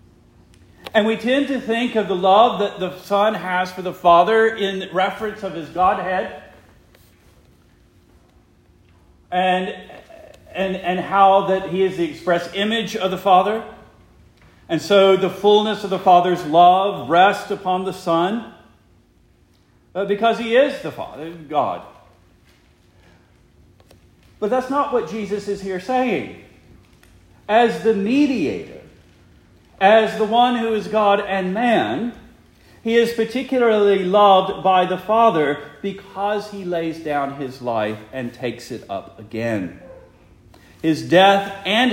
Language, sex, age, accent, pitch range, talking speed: English, male, 40-59, American, 145-215 Hz, 130 wpm